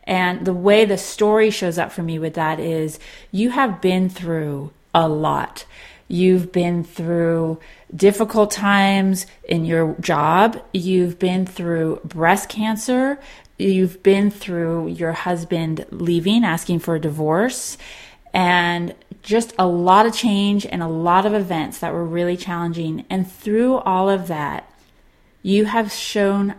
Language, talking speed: English, 145 wpm